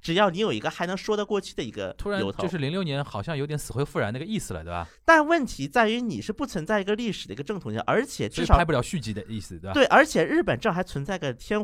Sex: male